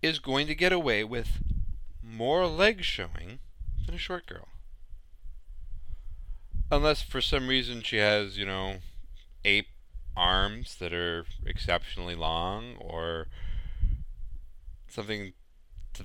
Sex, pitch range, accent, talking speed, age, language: male, 75-100 Hz, American, 110 wpm, 40-59, English